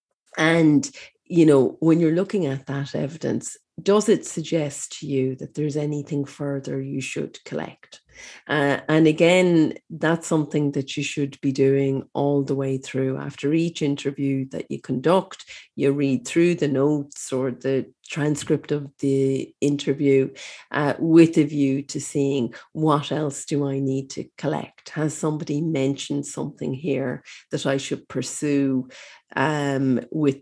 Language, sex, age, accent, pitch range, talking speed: English, female, 40-59, Irish, 140-165 Hz, 150 wpm